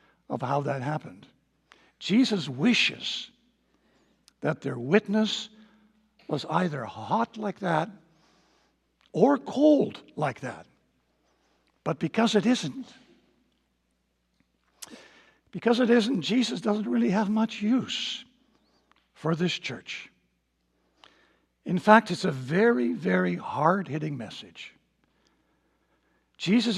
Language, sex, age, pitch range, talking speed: English, male, 60-79, 135-215 Hz, 95 wpm